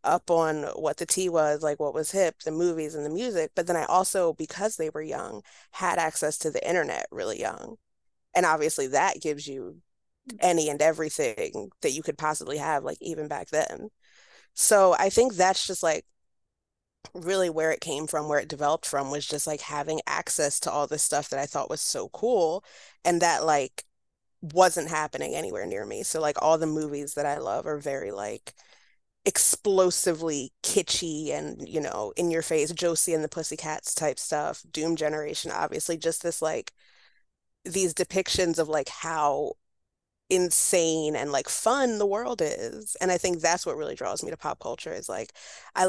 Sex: female